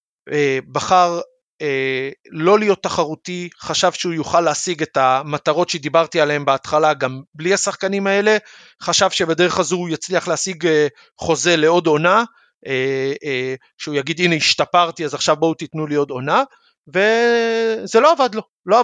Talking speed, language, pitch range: 145 wpm, Hebrew, 155-205 Hz